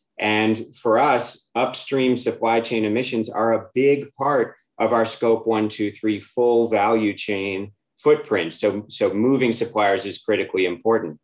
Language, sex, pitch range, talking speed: English, male, 105-130 Hz, 150 wpm